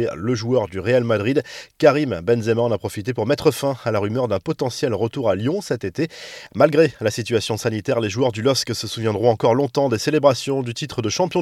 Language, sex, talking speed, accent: French, male, 215 wpm, French